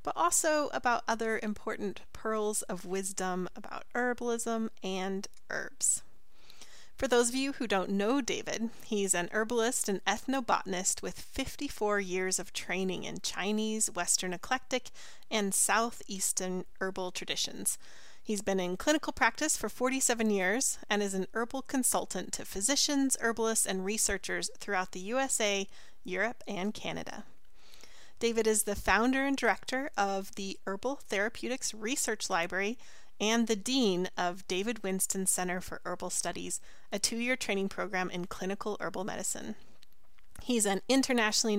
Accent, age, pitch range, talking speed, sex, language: American, 30-49, 195-245 Hz, 135 wpm, female, English